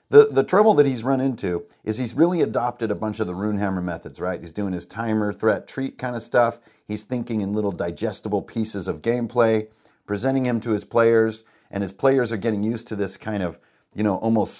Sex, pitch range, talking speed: male, 100-120 Hz, 220 wpm